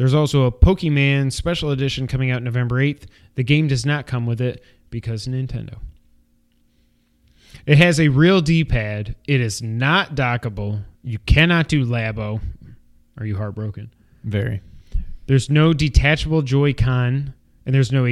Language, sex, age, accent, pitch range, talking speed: English, male, 30-49, American, 110-150 Hz, 140 wpm